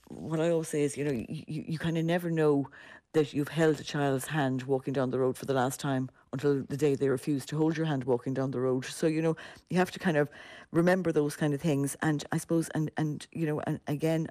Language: English